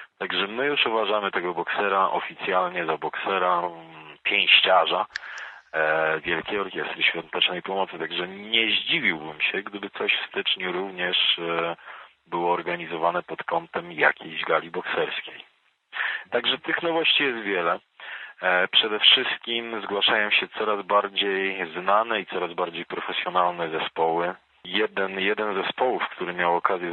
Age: 40-59